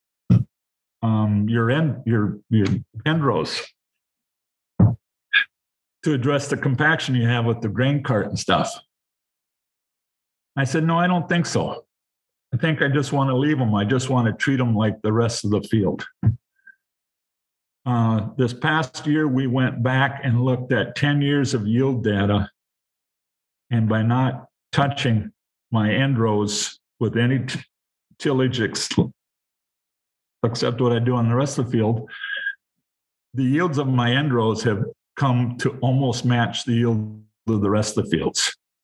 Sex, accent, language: male, American, English